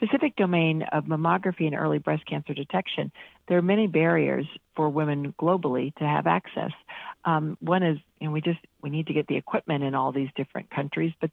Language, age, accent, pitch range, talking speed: English, 50-69, American, 150-180 Hz, 195 wpm